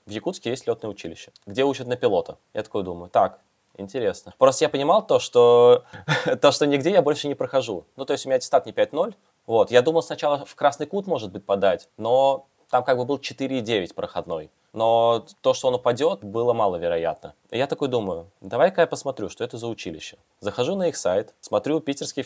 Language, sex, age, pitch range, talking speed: Russian, male, 20-39, 115-195 Hz, 195 wpm